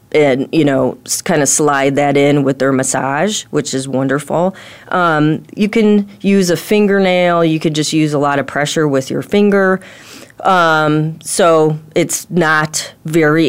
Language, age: English, 30-49